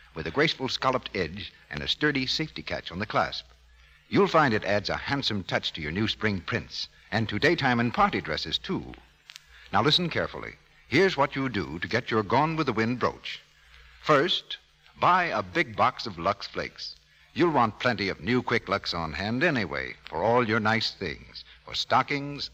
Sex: male